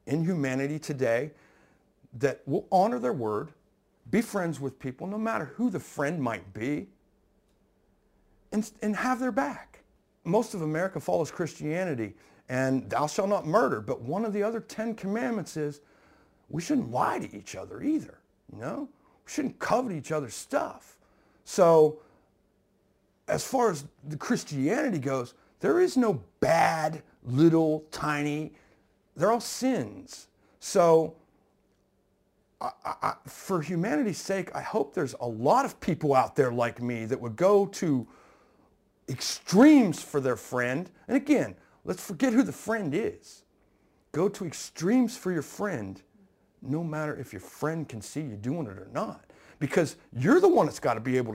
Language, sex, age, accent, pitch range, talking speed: English, male, 50-69, American, 140-215 Hz, 155 wpm